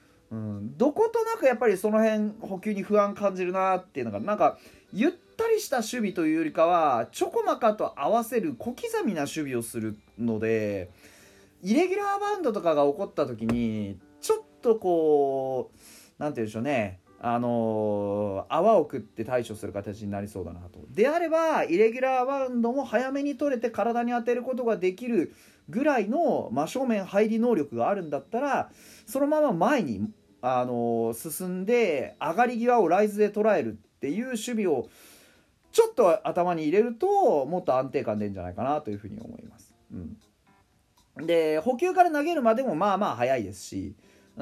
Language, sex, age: Japanese, male, 30-49